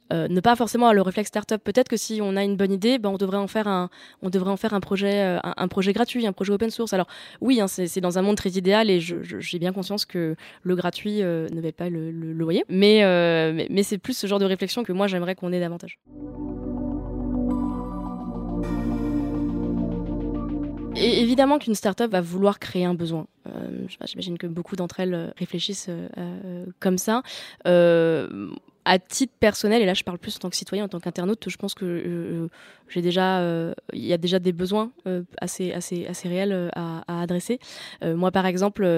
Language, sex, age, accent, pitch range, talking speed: French, female, 20-39, French, 175-205 Hz, 215 wpm